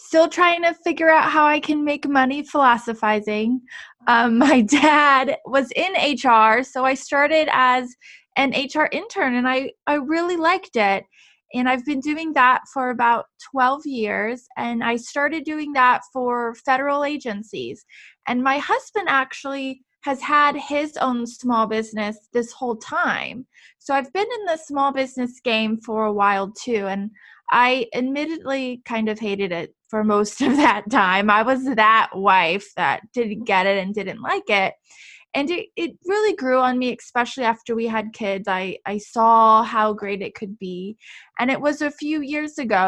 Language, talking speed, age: English, 170 wpm, 20-39